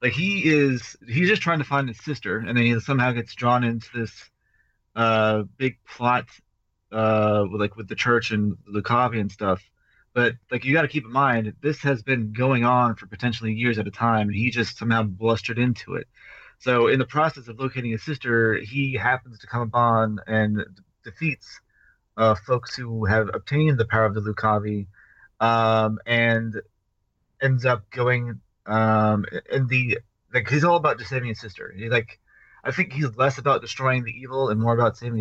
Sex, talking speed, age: male, 190 wpm, 30-49